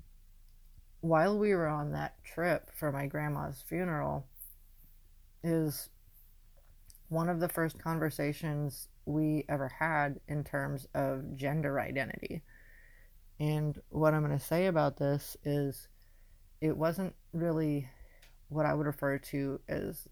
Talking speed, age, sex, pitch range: 120 wpm, 30-49, female, 115-155 Hz